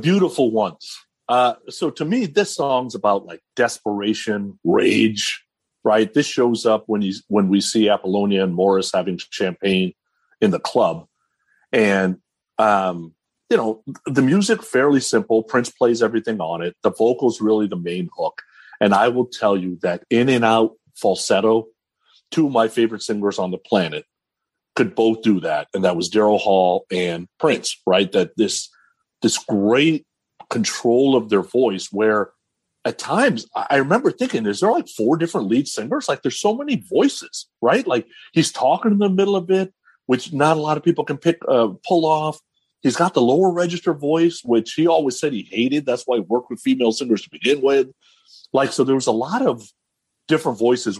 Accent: American